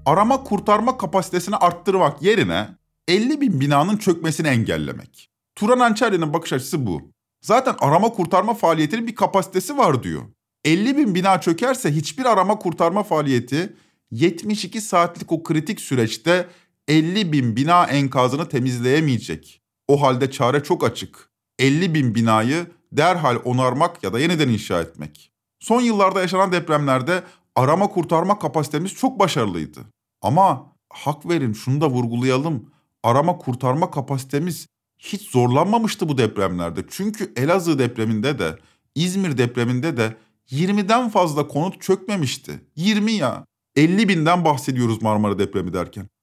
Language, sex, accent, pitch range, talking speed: Turkish, male, native, 125-185 Hz, 125 wpm